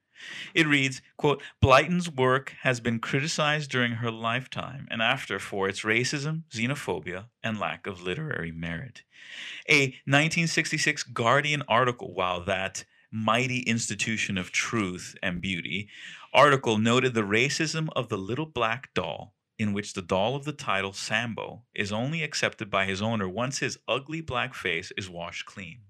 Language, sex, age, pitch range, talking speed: English, male, 30-49, 105-145 Hz, 150 wpm